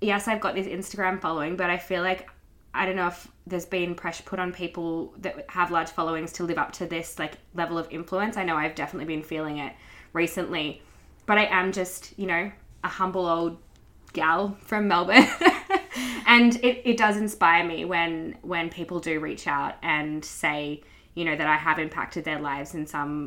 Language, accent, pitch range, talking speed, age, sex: English, Australian, 160-185 Hz, 200 wpm, 10-29, female